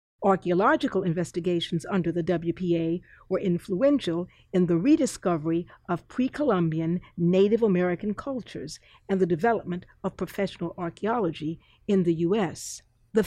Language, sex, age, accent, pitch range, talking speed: English, female, 50-69, American, 170-215 Hz, 115 wpm